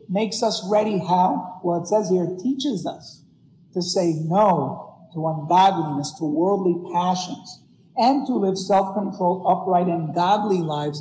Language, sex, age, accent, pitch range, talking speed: English, male, 50-69, American, 175-230 Hz, 140 wpm